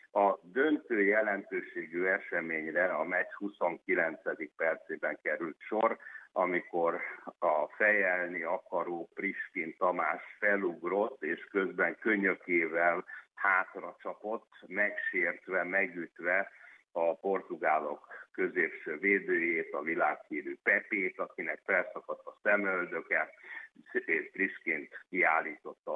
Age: 60-79